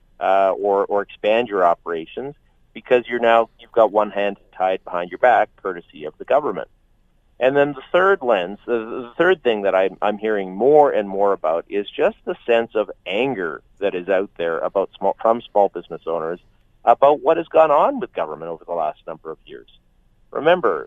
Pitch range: 100-120 Hz